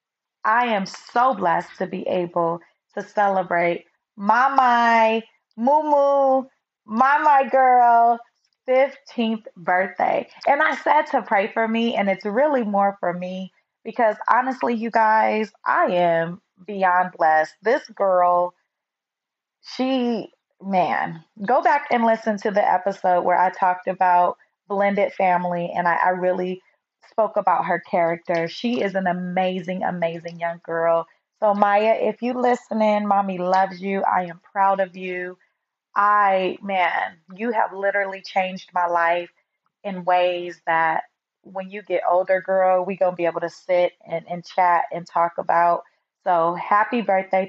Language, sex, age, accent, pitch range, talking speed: English, female, 30-49, American, 180-225 Hz, 145 wpm